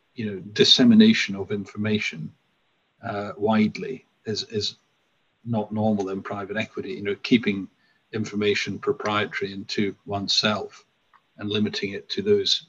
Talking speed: 125 wpm